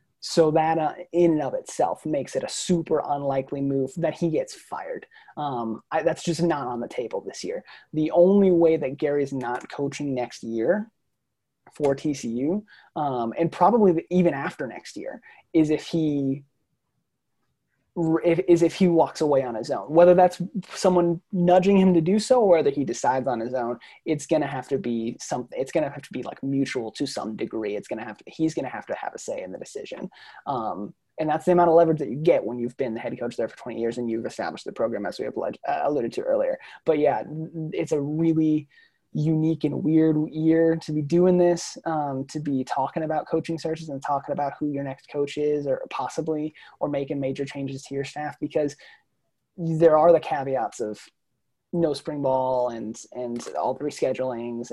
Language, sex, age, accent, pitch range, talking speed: English, male, 20-39, American, 135-170 Hz, 205 wpm